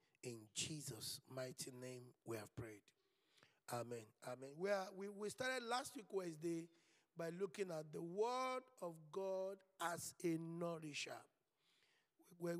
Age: 50-69